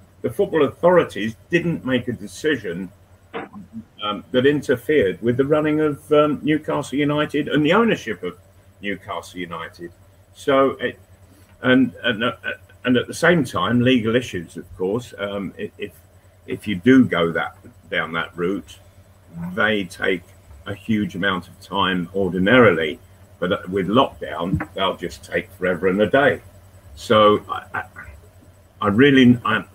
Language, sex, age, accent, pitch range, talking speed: English, male, 50-69, British, 95-120 Hz, 140 wpm